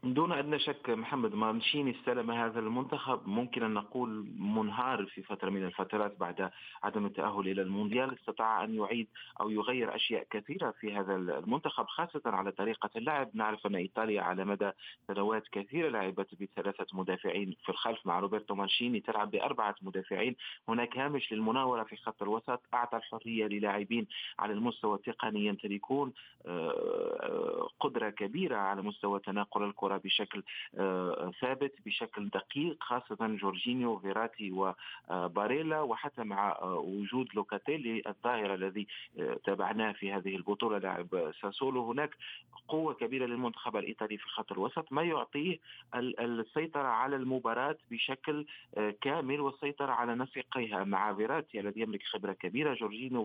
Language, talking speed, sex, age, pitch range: Arabic, 130 wpm, male, 30-49, 100-125 Hz